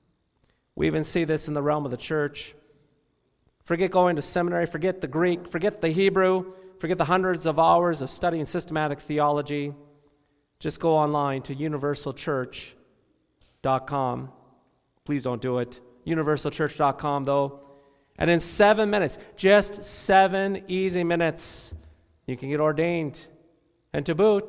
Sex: male